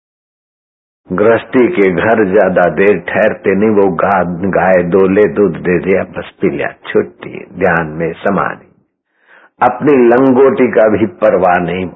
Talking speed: 130 wpm